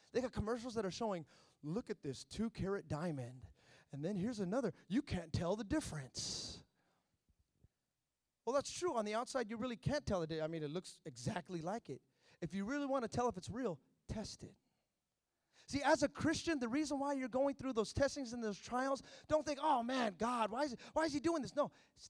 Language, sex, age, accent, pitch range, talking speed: English, male, 30-49, American, 200-310 Hz, 215 wpm